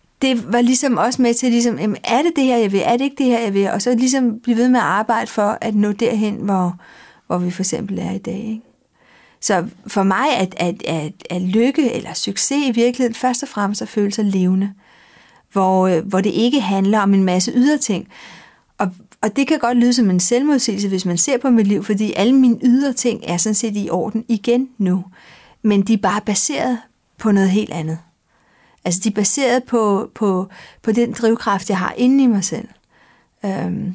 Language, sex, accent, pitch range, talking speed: Danish, female, native, 195-245 Hz, 210 wpm